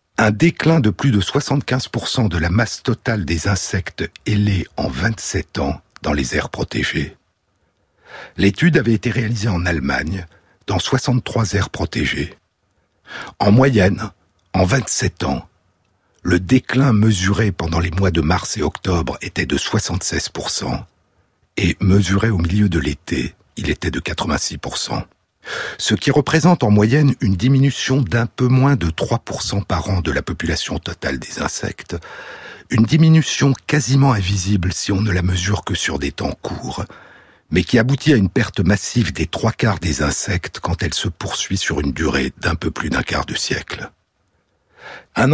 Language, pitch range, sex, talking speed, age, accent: French, 90-125 Hz, male, 155 wpm, 60-79, French